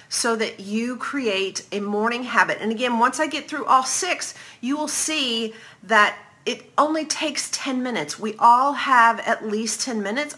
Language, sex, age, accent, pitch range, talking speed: English, female, 40-59, American, 185-255 Hz, 180 wpm